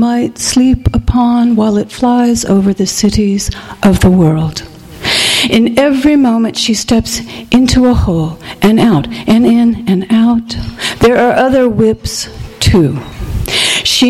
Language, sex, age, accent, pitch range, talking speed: English, female, 60-79, American, 190-230 Hz, 135 wpm